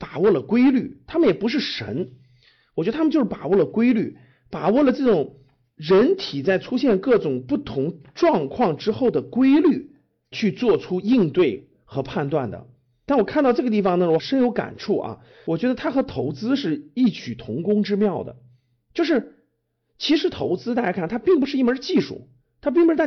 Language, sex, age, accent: Chinese, male, 50-69, native